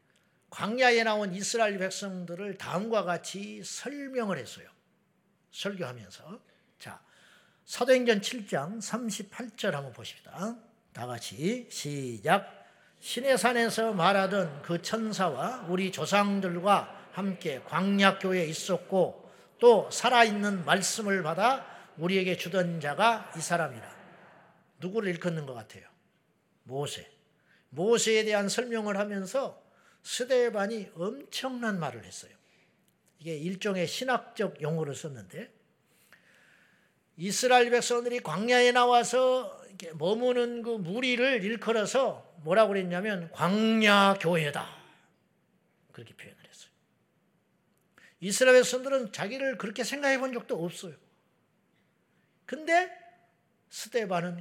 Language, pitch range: Korean, 175-230 Hz